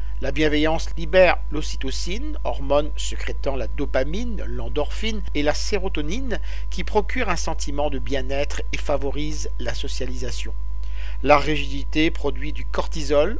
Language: French